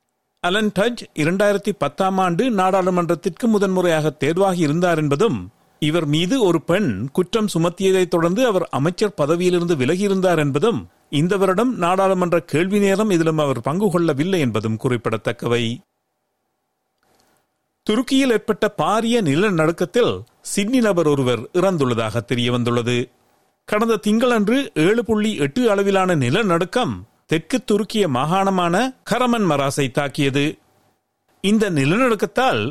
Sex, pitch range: male, 145-215 Hz